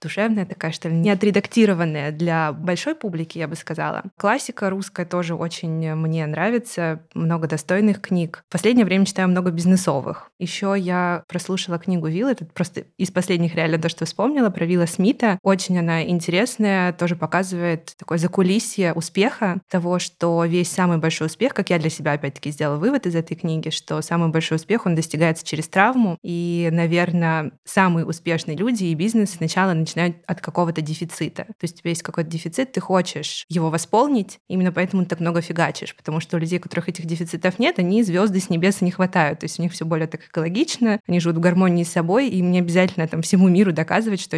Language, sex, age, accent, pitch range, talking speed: Russian, female, 20-39, native, 165-195 Hz, 190 wpm